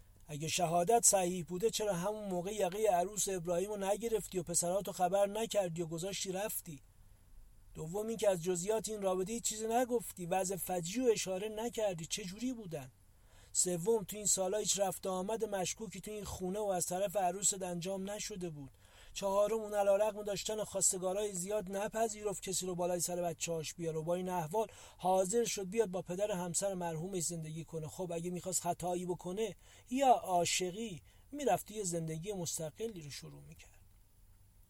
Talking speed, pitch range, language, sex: 165 wpm, 160-205 Hz, Persian, male